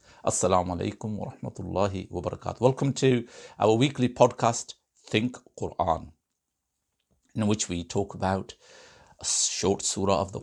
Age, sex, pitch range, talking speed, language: 60-79, male, 90-125 Hz, 140 wpm, English